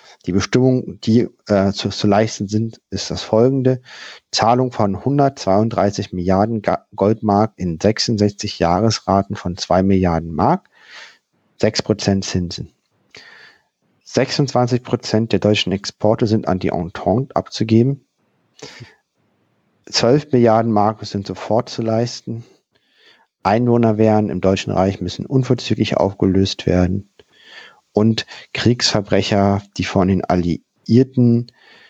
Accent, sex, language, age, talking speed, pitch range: German, male, German, 50-69, 105 wpm, 95-115 Hz